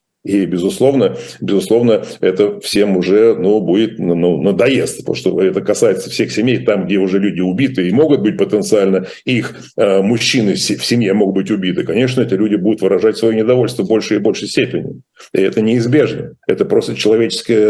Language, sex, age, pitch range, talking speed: Russian, male, 50-69, 110-140 Hz, 165 wpm